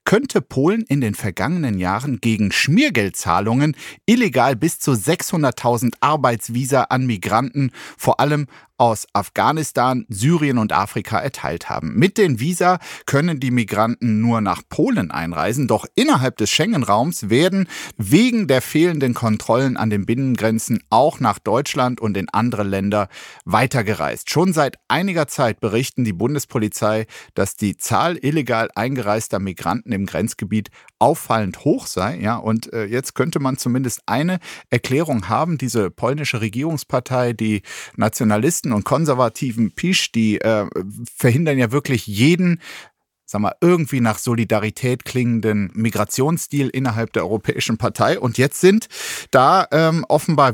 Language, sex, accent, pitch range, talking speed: German, male, German, 110-150 Hz, 135 wpm